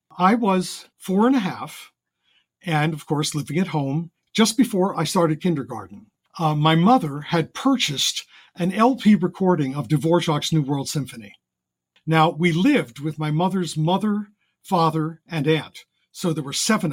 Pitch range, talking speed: 150-200 Hz, 155 wpm